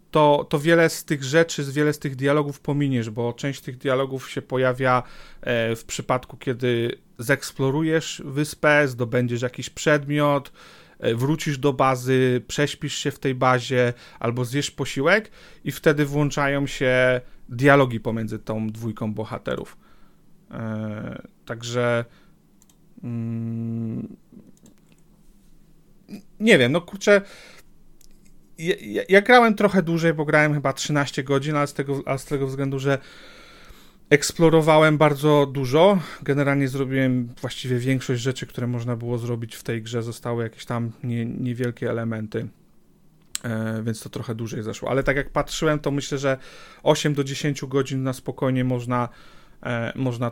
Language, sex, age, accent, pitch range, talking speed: Polish, male, 40-59, native, 120-150 Hz, 130 wpm